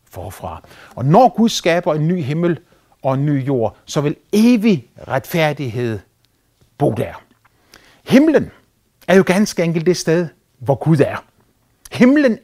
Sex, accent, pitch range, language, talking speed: male, native, 125-195 Hz, Danish, 140 wpm